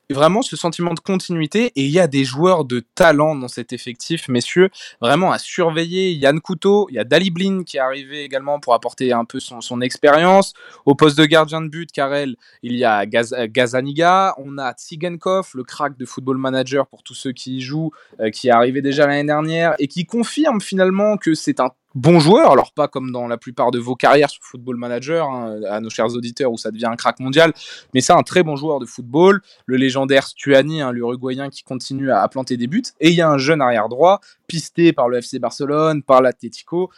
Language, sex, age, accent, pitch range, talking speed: French, male, 20-39, French, 130-175 Hz, 225 wpm